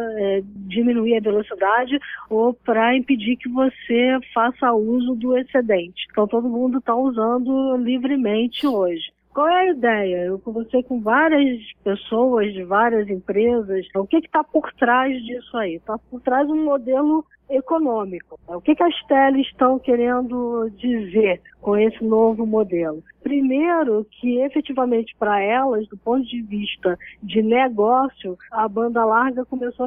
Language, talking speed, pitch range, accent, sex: Portuguese, 150 wpm, 220-275 Hz, Brazilian, female